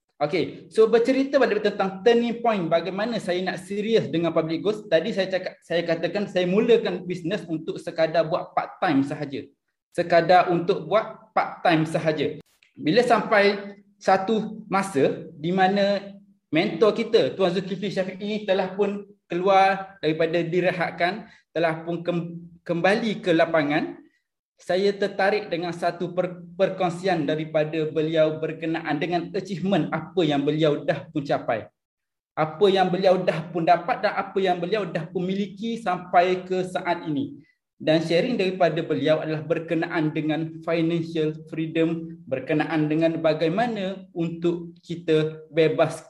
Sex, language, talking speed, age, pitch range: male, Malay, 130 wpm, 20-39, 165-200 Hz